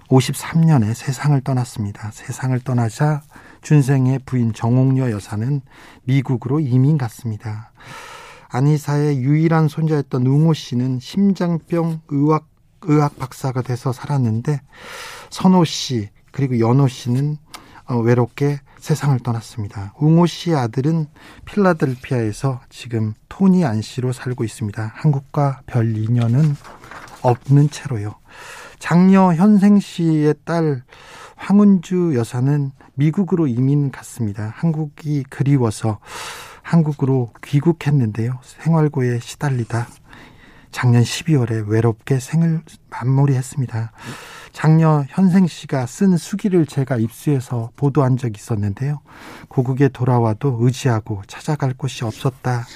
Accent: native